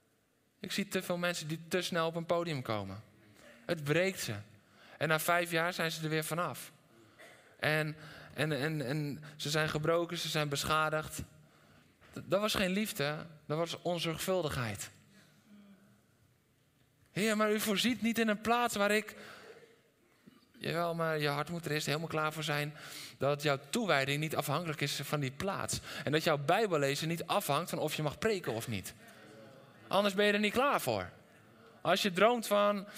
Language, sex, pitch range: Dutch, male, 140-195 Hz